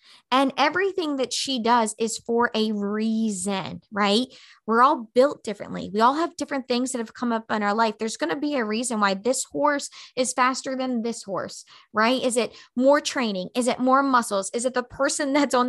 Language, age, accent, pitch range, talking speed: English, 20-39, American, 215-270 Hz, 210 wpm